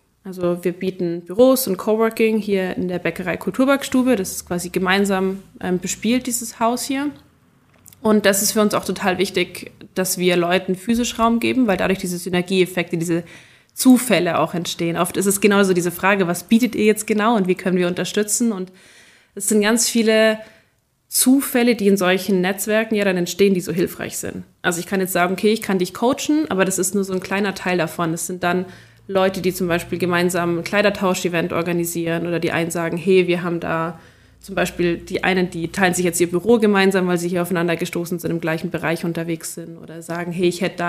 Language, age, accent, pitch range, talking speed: German, 20-39, German, 175-205 Hz, 205 wpm